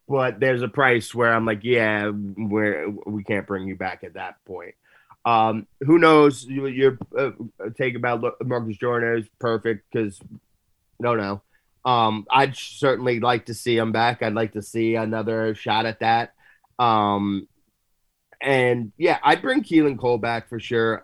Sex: male